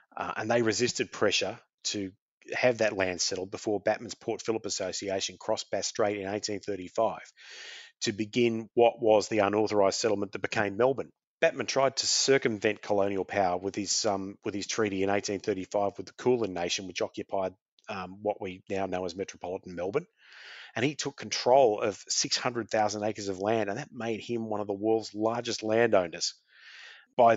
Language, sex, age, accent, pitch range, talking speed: English, male, 30-49, Australian, 100-120 Hz, 170 wpm